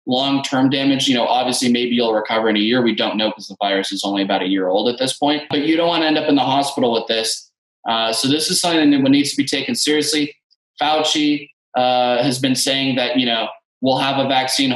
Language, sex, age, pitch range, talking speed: English, male, 20-39, 120-150 Hz, 250 wpm